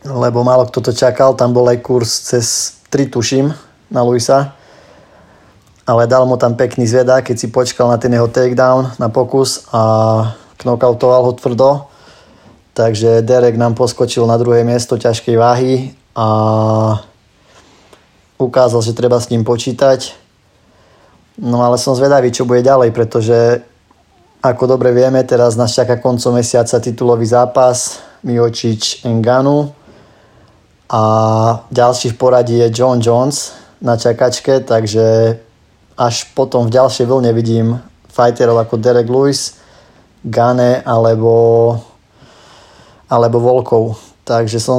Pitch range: 115-125 Hz